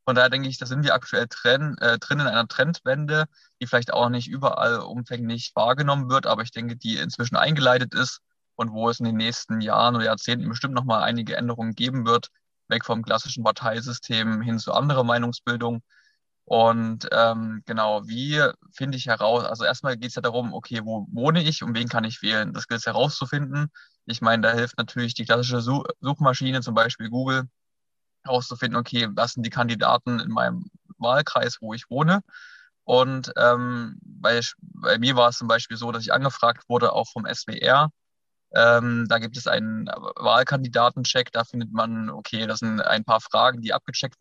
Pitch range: 115-130 Hz